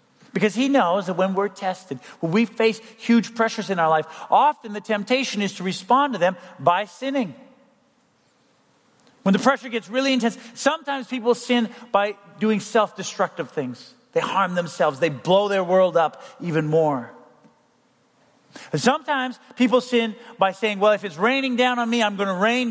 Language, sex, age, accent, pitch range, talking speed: English, male, 40-59, American, 175-235 Hz, 170 wpm